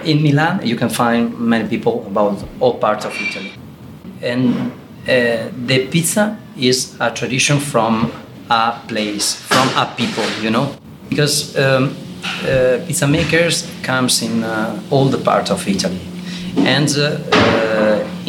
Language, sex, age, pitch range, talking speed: English, male, 40-59, 115-180 Hz, 140 wpm